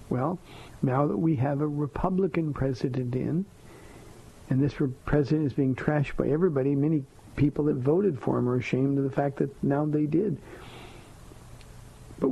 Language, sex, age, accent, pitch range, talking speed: English, male, 50-69, American, 125-150 Hz, 160 wpm